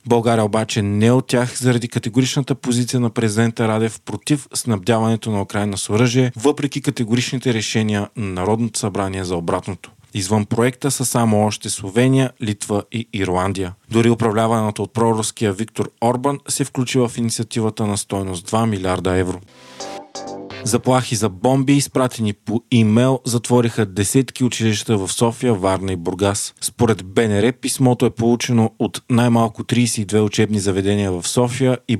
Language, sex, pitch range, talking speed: Bulgarian, male, 105-125 Hz, 145 wpm